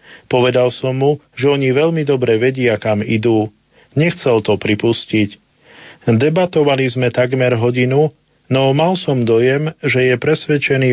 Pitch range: 120-140 Hz